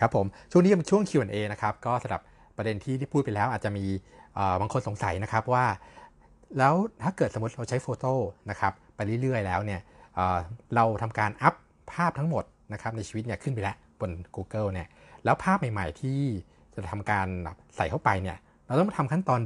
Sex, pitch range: male, 95-125 Hz